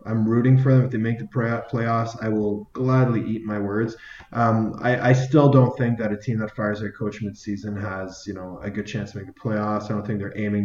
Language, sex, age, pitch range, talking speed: English, male, 20-39, 105-130 Hz, 250 wpm